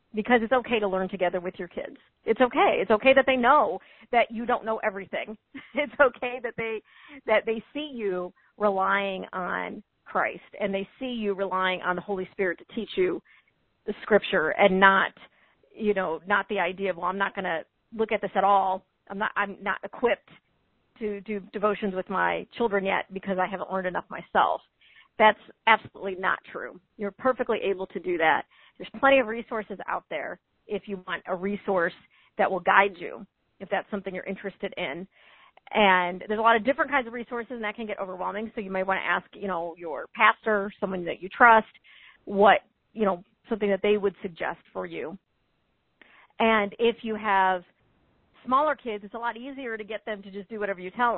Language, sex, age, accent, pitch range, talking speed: English, female, 40-59, American, 195-230 Hz, 200 wpm